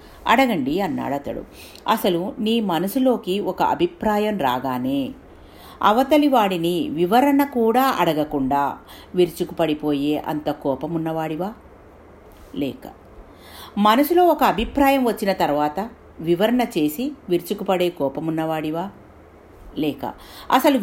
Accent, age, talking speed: native, 50-69, 80 wpm